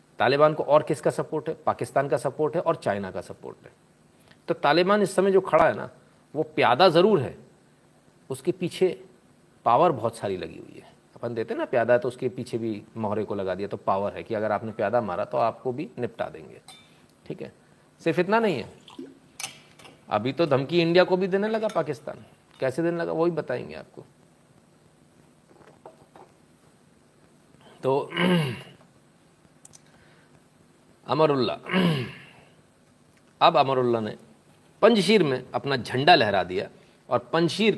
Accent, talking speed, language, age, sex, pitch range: native, 150 wpm, Hindi, 40-59, male, 125-180 Hz